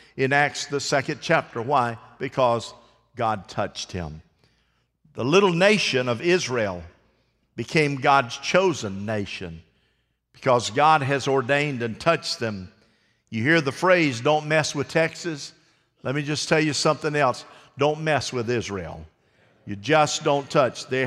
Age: 50-69